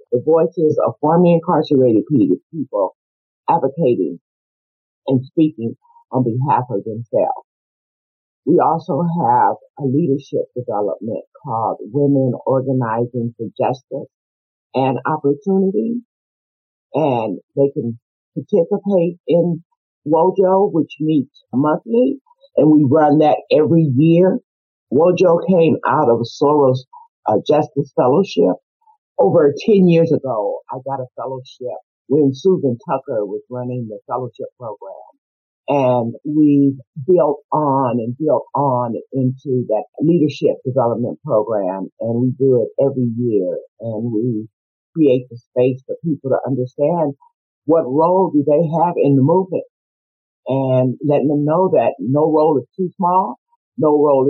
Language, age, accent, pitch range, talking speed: English, 50-69, American, 130-170 Hz, 125 wpm